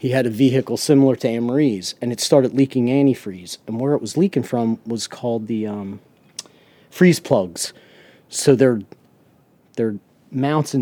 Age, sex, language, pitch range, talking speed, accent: 40-59, male, English, 120-150 Hz, 160 wpm, American